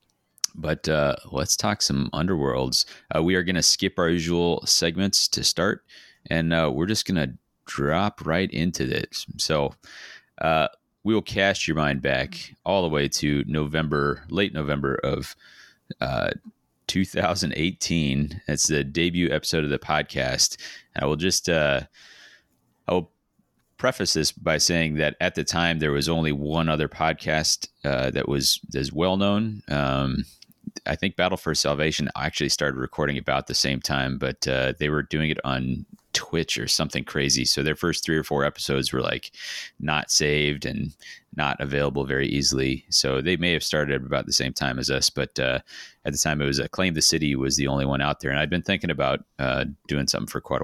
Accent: American